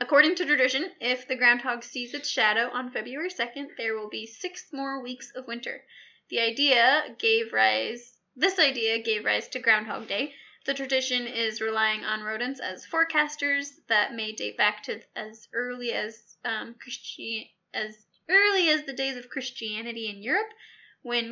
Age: 10-29